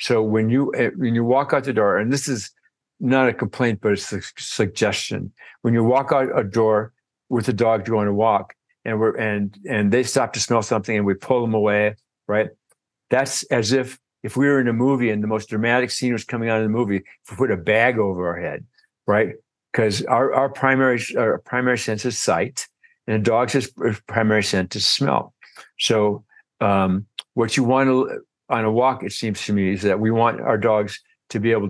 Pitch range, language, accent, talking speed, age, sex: 105-125 Hz, English, American, 220 wpm, 60-79, male